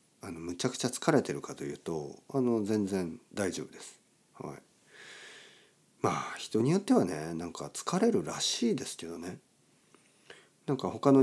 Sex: male